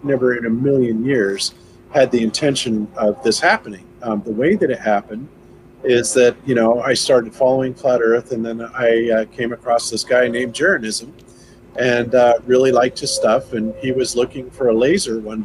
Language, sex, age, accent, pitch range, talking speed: English, male, 40-59, American, 120-140 Hz, 195 wpm